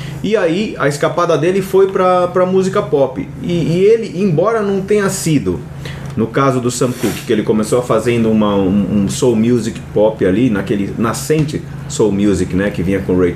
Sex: male